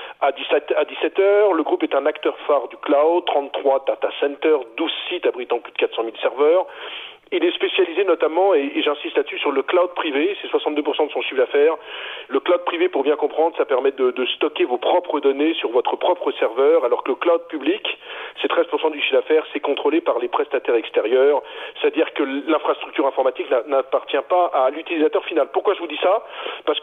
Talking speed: 195 wpm